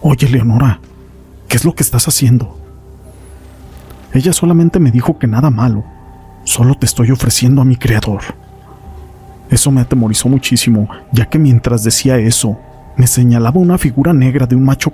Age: 40-59